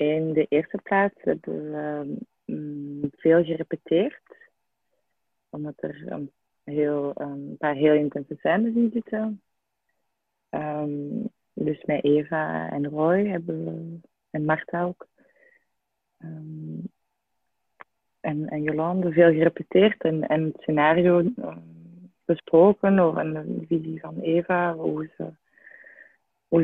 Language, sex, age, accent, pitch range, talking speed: Dutch, female, 20-39, Dutch, 155-180 Hz, 100 wpm